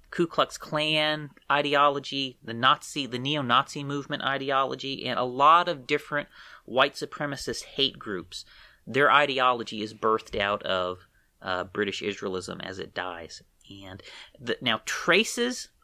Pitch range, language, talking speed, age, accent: 110-150 Hz, English, 135 wpm, 30-49, American